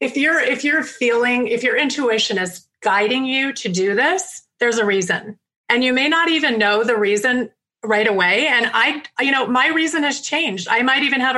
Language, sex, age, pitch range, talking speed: English, female, 30-49, 200-250 Hz, 205 wpm